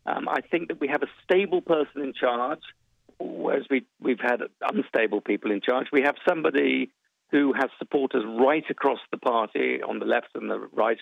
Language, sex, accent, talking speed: English, male, British, 190 wpm